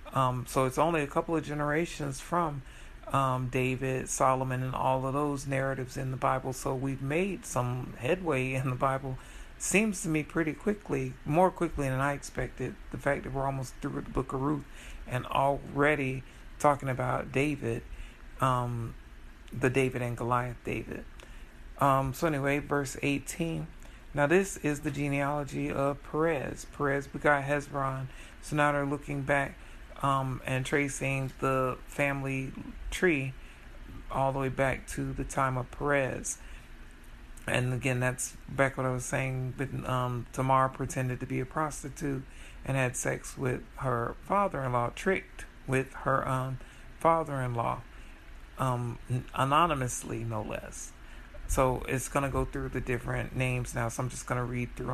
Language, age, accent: English, 40-59, American